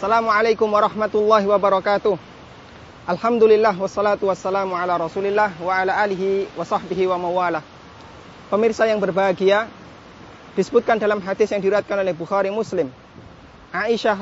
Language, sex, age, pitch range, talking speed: Indonesian, male, 30-49, 195-240 Hz, 115 wpm